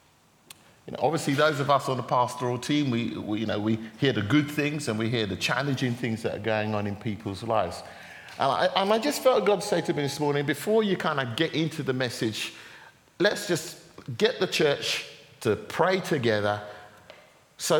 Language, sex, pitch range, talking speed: English, male, 120-160 Hz, 205 wpm